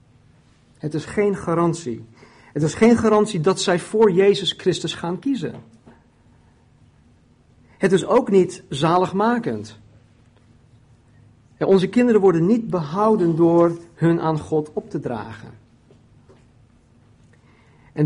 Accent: Dutch